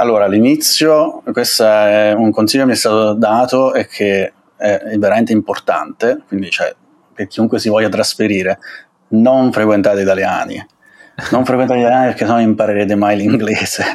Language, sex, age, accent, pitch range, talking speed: Italian, male, 30-49, native, 105-125 Hz, 145 wpm